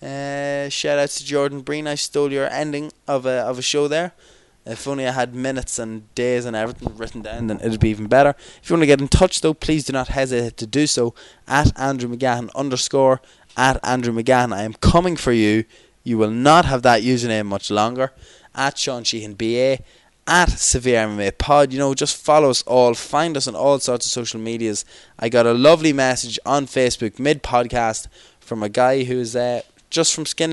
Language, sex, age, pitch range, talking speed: English, male, 20-39, 115-140 Hz, 210 wpm